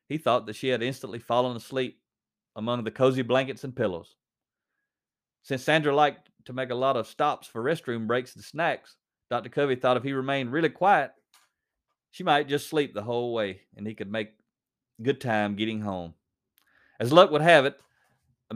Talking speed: 185 wpm